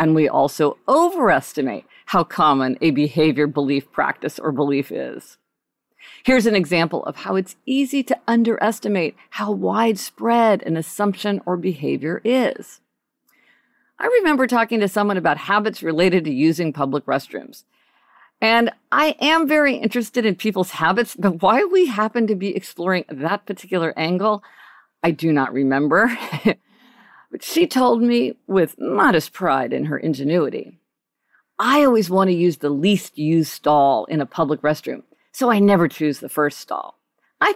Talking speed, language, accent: 150 wpm, English, American